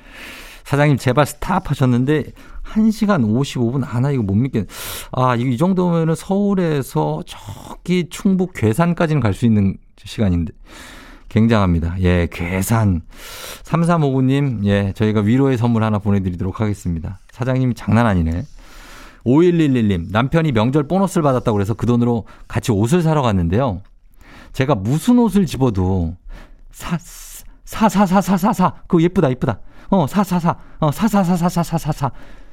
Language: Korean